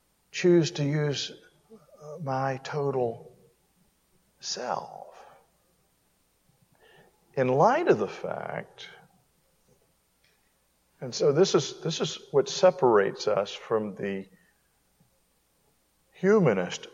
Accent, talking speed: American, 80 wpm